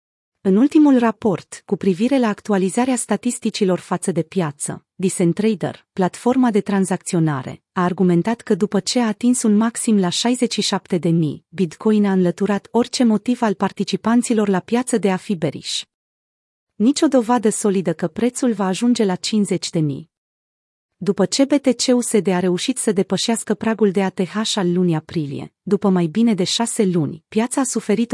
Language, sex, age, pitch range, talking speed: Romanian, female, 30-49, 185-230 Hz, 160 wpm